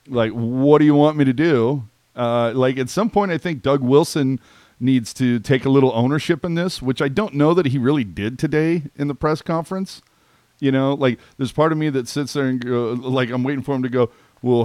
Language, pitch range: English, 115-140 Hz